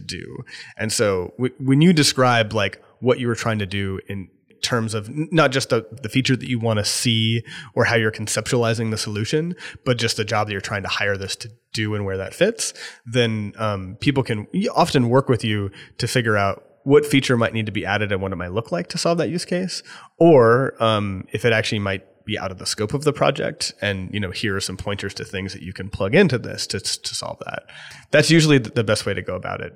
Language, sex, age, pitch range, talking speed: English, male, 30-49, 100-125 Hz, 245 wpm